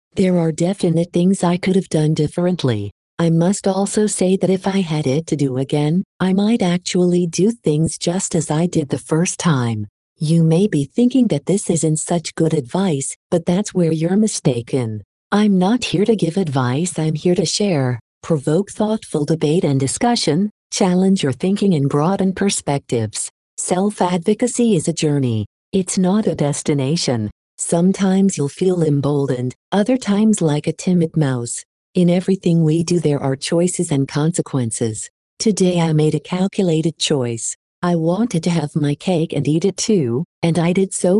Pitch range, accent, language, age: 150-190 Hz, American, English, 50-69